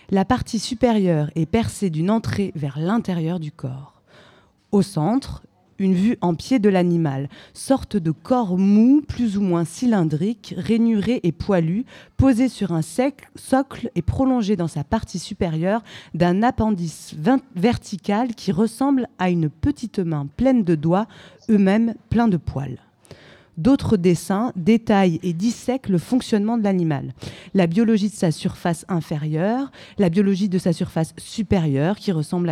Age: 20-39